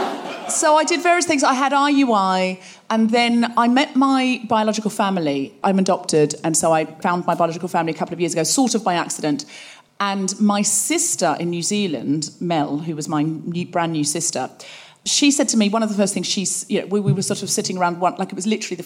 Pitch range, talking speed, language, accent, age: 170-245 Hz, 225 wpm, English, British, 40-59